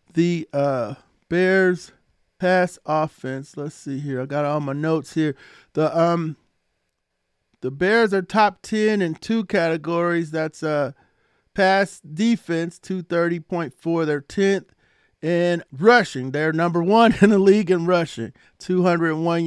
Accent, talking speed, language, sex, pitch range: American, 130 wpm, English, male, 150-185 Hz